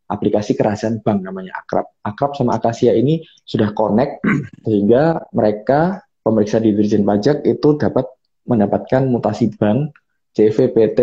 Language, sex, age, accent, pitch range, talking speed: Indonesian, male, 20-39, native, 105-140 Hz, 125 wpm